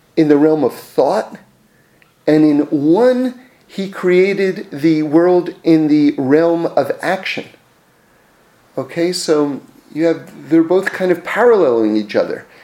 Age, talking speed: 40-59, 135 wpm